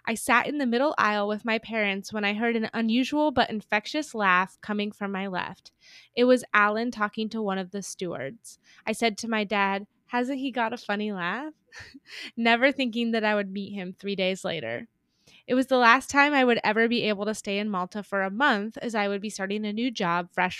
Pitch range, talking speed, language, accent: 200-245 Hz, 225 wpm, English, American